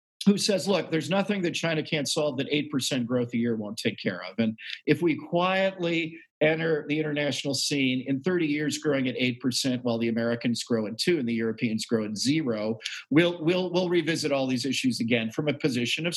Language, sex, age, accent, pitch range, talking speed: English, male, 50-69, American, 130-185 Hz, 210 wpm